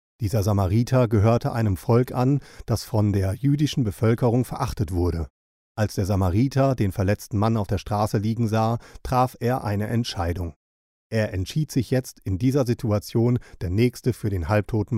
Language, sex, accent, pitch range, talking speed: German, male, German, 100-125 Hz, 160 wpm